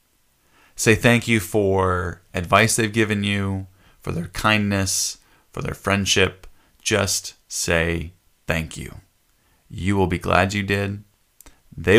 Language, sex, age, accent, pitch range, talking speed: English, male, 20-39, American, 90-115 Hz, 125 wpm